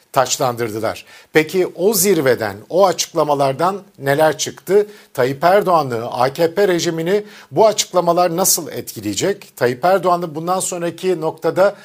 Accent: native